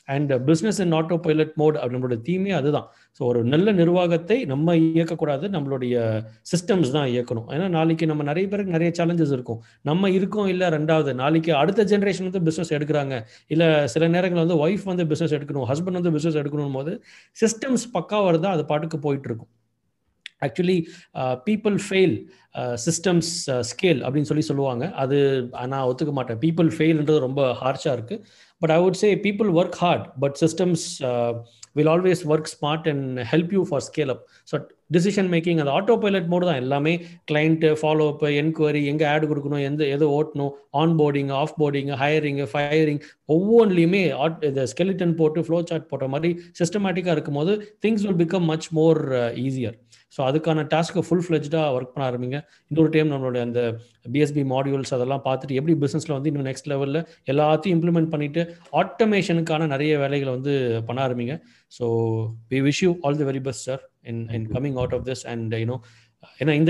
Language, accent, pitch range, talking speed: Tamil, native, 135-170 Hz, 165 wpm